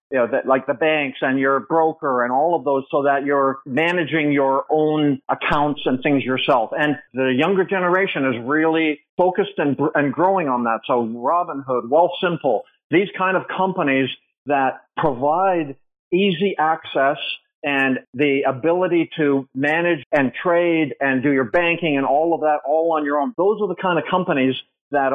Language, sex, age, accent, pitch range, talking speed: English, male, 50-69, American, 135-165 Hz, 170 wpm